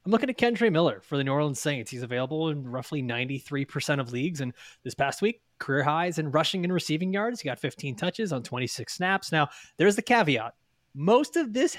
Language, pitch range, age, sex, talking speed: English, 140-200 Hz, 20-39, male, 215 wpm